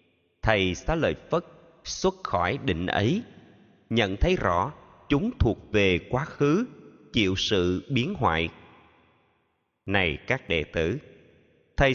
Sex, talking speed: male, 125 wpm